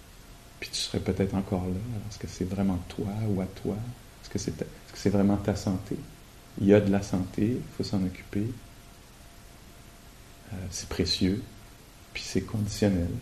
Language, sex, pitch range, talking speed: English, male, 95-110 Hz, 185 wpm